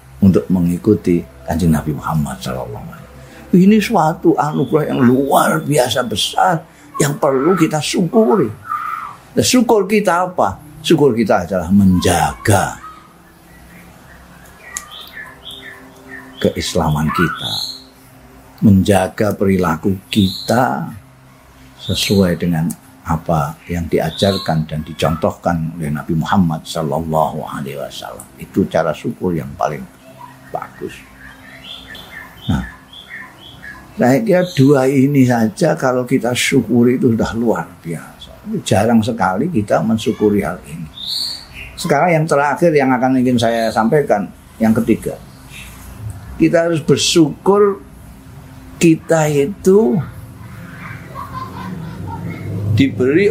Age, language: 50-69, Indonesian